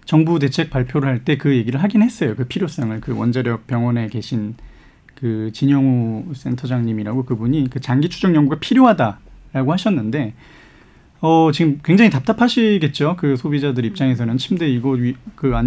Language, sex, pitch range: Korean, male, 130-180 Hz